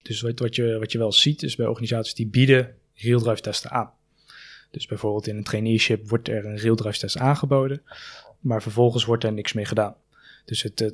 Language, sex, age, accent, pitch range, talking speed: Dutch, male, 20-39, Dutch, 110-125 Hz, 190 wpm